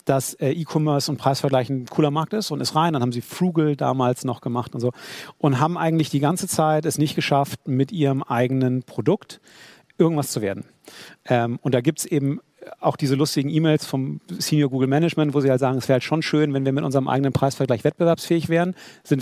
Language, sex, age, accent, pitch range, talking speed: German, male, 40-59, German, 135-160 Hz, 205 wpm